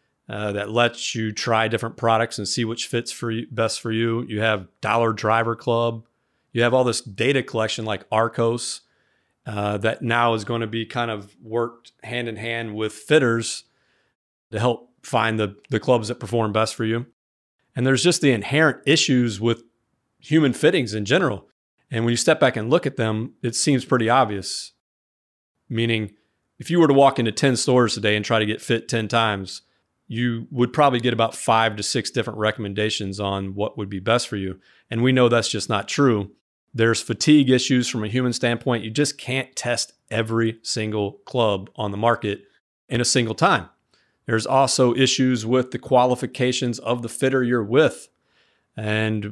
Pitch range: 110-125 Hz